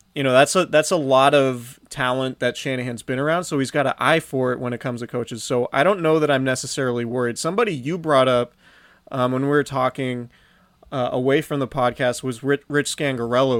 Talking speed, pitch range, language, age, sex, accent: 220 wpm, 125-140 Hz, English, 30-49, male, American